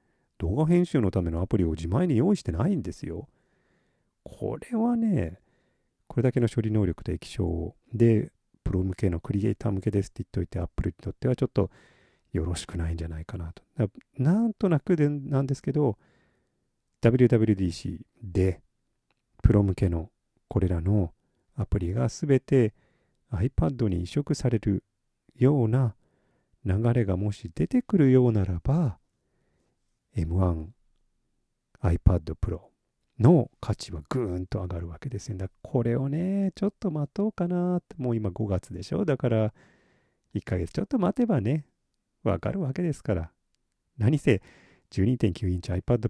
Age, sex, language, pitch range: 40-59, male, Japanese, 95-135 Hz